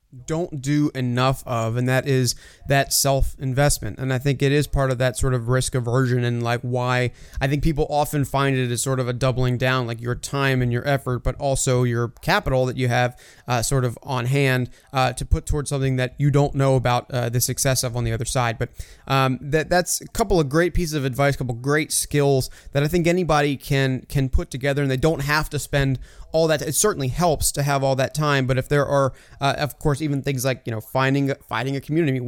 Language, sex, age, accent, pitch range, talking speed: English, male, 30-49, American, 130-155 Hz, 240 wpm